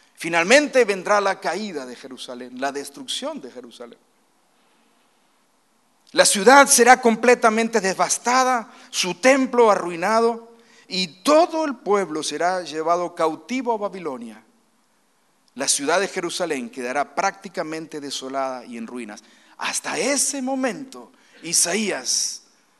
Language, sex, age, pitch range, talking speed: Spanish, male, 50-69, 175-265 Hz, 110 wpm